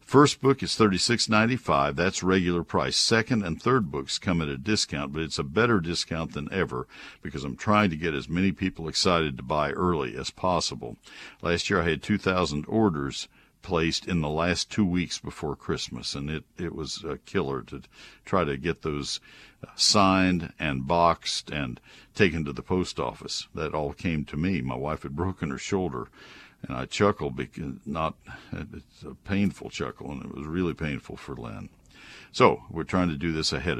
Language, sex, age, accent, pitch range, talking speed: English, male, 60-79, American, 80-105 Hz, 185 wpm